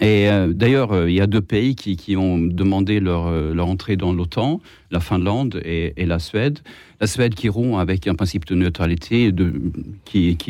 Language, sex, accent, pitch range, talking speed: French, male, French, 90-120 Hz, 210 wpm